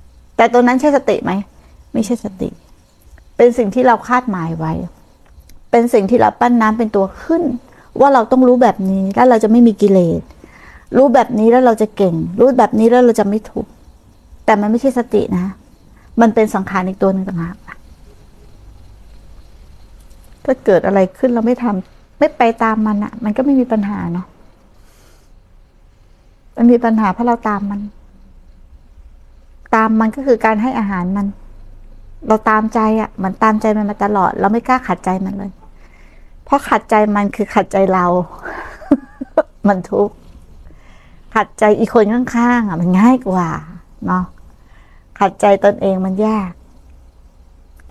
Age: 60-79